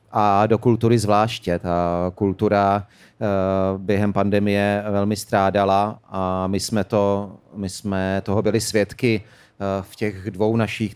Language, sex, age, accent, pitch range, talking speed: Czech, male, 30-49, native, 95-110 Hz, 125 wpm